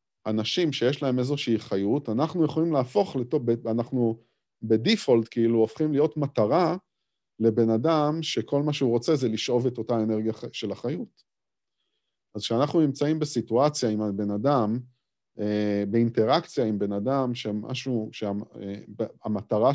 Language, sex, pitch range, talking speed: Hebrew, male, 110-145 Hz, 125 wpm